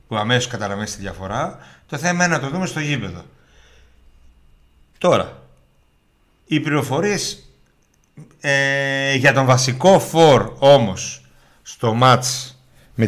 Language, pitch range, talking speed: Greek, 95-140 Hz, 105 wpm